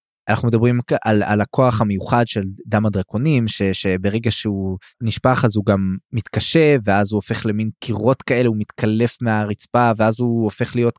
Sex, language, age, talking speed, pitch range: male, Hebrew, 20-39, 165 wpm, 105-125 Hz